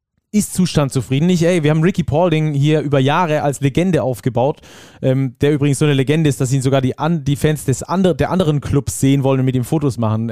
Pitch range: 135-165 Hz